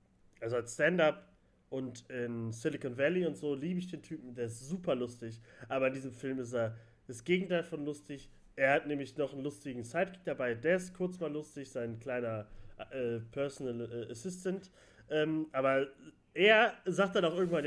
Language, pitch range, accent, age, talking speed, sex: German, 130-185 Hz, German, 30-49, 180 wpm, male